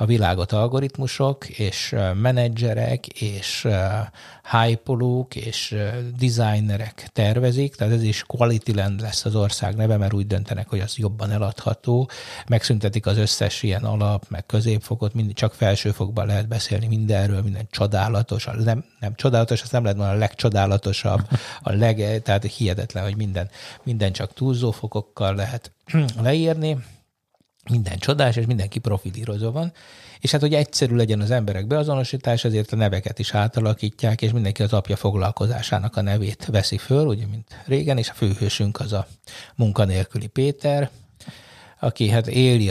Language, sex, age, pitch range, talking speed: Hungarian, male, 60-79, 105-125 Hz, 145 wpm